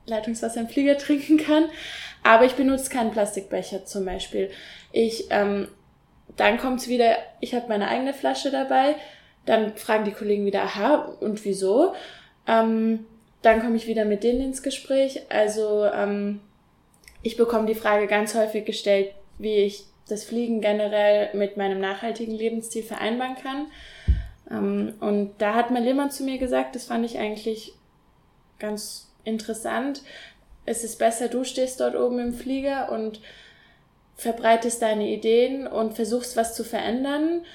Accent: German